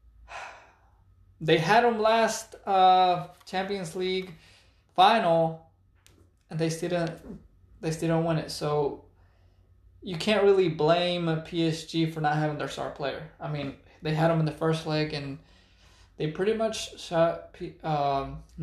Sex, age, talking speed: male, 20-39, 135 wpm